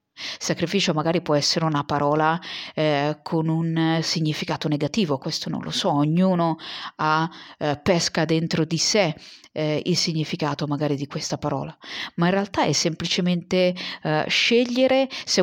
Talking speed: 140 wpm